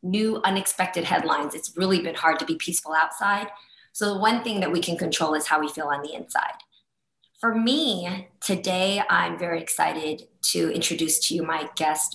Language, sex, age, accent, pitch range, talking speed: English, female, 20-39, American, 160-190 Hz, 190 wpm